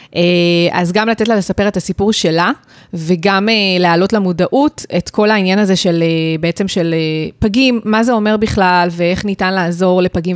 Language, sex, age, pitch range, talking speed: Hebrew, female, 20-39, 175-215 Hz, 155 wpm